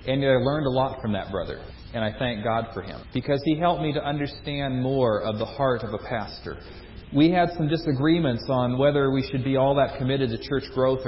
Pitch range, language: 115-145 Hz, English